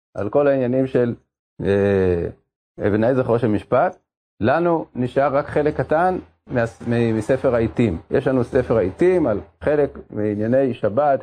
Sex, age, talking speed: male, 40-59, 125 wpm